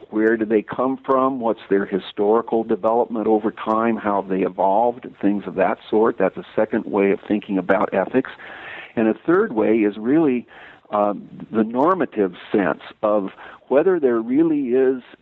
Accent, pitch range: American, 105-125 Hz